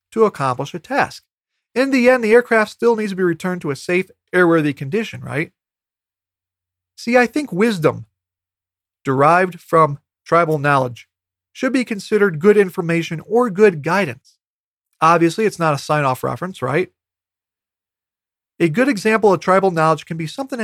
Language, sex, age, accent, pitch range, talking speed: English, male, 40-59, American, 130-185 Hz, 155 wpm